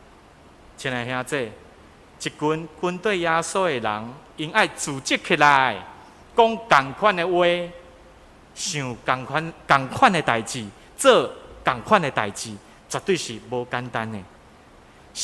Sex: male